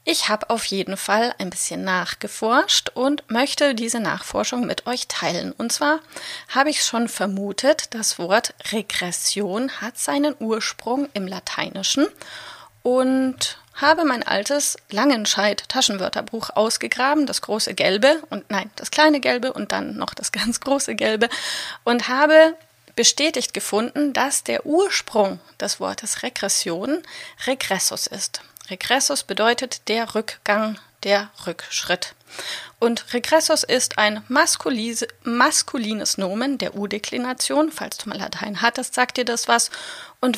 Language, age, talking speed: German, 30-49, 130 wpm